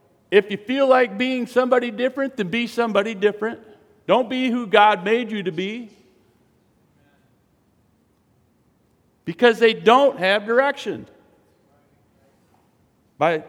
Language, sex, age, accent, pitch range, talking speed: English, male, 50-69, American, 120-185 Hz, 110 wpm